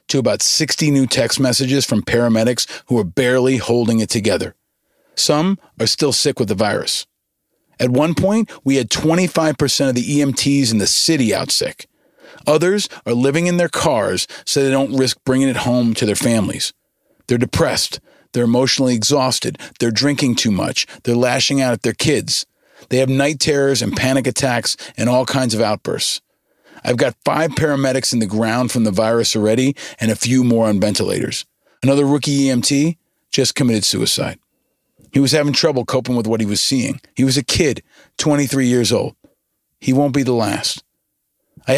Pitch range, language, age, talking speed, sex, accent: 115-145 Hz, English, 40-59, 180 wpm, male, American